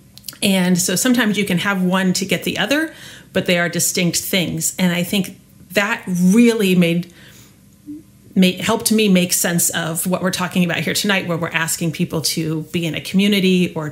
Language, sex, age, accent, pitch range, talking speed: English, female, 30-49, American, 170-205 Hz, 190 wpm